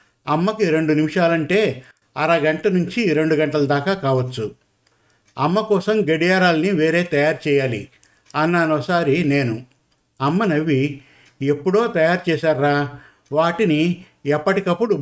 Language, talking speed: Telugu, 100 wpm